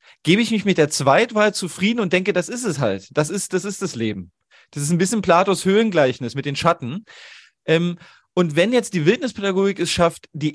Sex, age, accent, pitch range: male, 40-59, German, 145-190 Hz